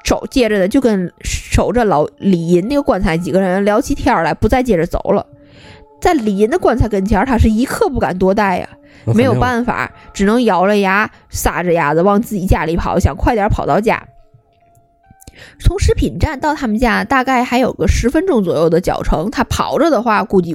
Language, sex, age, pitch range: Chinese, female, 20-39, 190-260 Hz